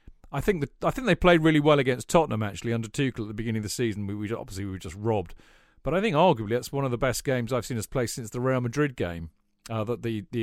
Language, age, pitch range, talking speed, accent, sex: English, 40-59, 110-145 Hz, 290 wpm, British, male